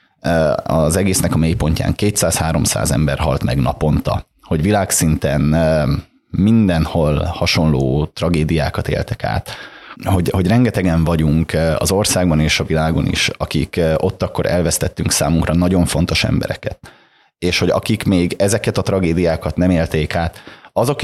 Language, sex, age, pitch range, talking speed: Hungarian, male, 30-49, 80-95 Hz, 130 wpm